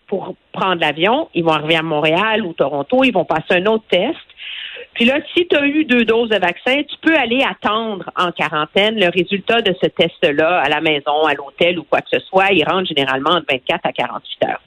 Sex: female